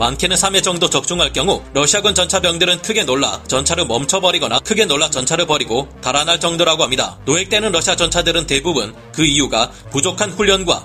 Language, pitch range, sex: Korean, 145-185 Hz, male